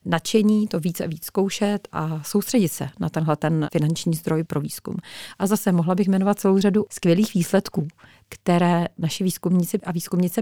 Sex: female